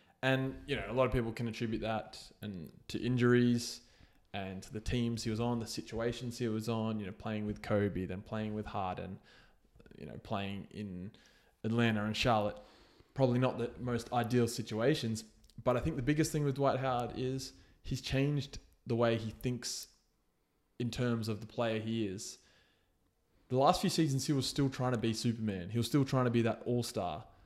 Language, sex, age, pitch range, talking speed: English, male, 20-39, 110-125 Hz, 195 wpm